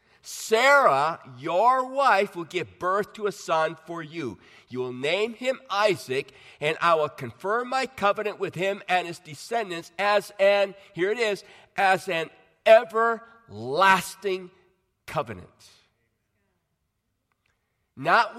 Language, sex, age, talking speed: English, male, 50-69, 120 wpm